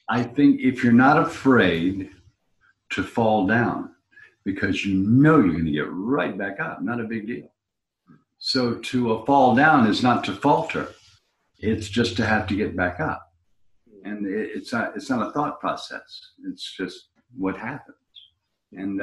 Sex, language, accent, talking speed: male, English, American, 165 wpm